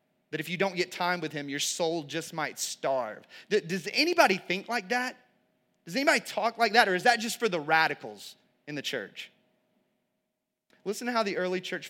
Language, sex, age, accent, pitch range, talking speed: English, male, 30-49, American, 150-195 Hz, 195 wpm